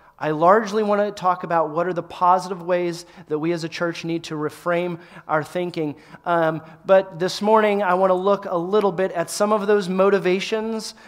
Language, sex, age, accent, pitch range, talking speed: English, male, 30-49, American, 150-185 Hz, 200 wpm